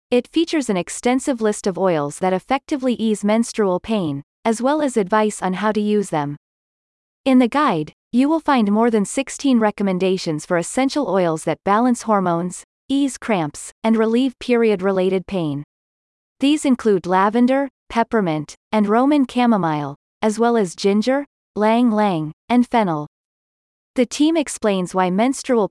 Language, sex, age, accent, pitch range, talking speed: English, female, 30-49, American, 180-245 Hz, 150 wpm